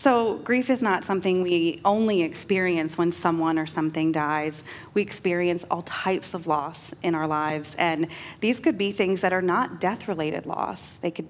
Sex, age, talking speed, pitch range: female, 30-49, 180 wpm, 165-200 Hz